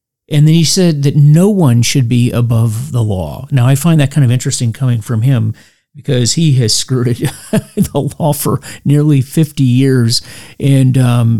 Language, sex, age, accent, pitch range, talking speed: English, male, 40-59, American, 120-145 Hz, 185 wpm